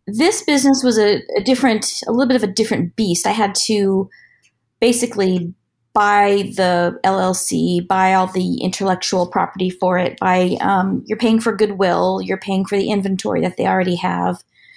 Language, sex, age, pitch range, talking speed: English, female, 30-49, 180-210 Hz, 165 wpm